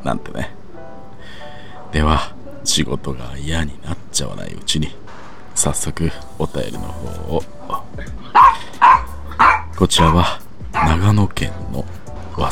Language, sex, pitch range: Japanese, male, 75-95 Hz